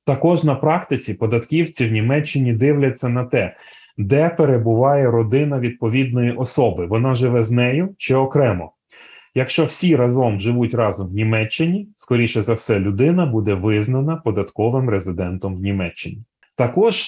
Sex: male